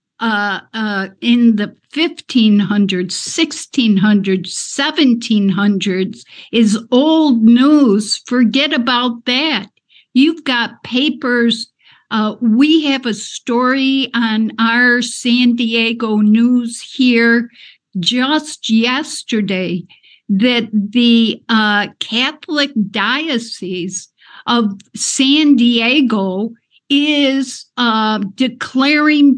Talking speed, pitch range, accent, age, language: 80 wpm, 210-260 Hz, American, 60-79, English